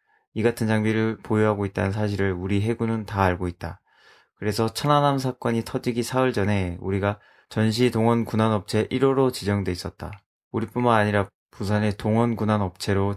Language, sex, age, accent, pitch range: Korean, male, 20-39, native, 95-115 Hz